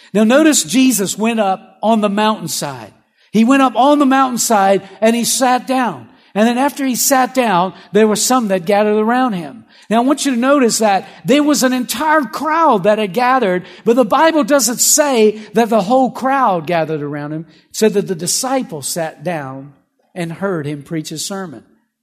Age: 50-69